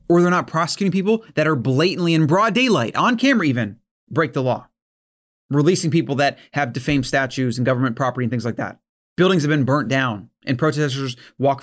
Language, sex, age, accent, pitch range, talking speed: English, male, 30-49, American, 130-165 Hz, 195 wpm